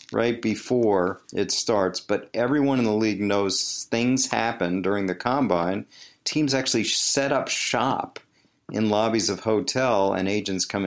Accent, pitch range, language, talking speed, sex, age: American, 95-125 Hz, English, 150 wpm, male, 50-69